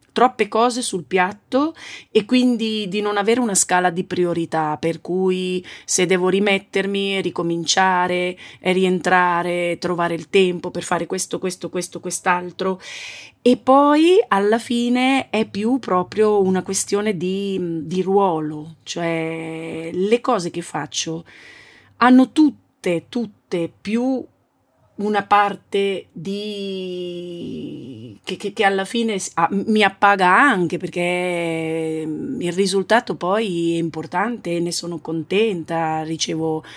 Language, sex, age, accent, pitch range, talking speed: Italian, female, 30-49, native, 165-205 Hz, 115 wpm